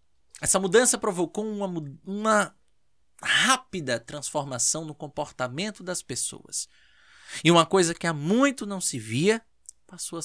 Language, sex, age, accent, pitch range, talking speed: Portuguese, male, 20-39, Brazilian, 130-195 Hz, 130 wpm